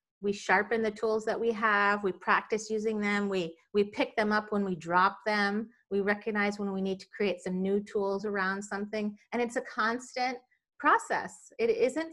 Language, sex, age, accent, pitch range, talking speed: English, female, 30-49, American, 190-225 Hz, 195 wpm